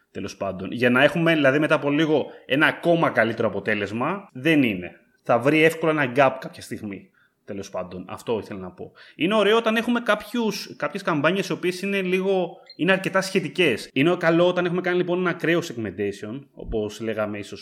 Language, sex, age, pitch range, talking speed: Greek, male, 20-39, 115-165 Hz, 180 wpm